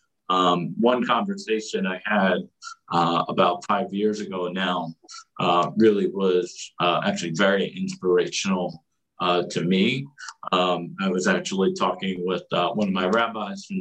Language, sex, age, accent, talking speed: English, male, 50-69, American, 145 wpm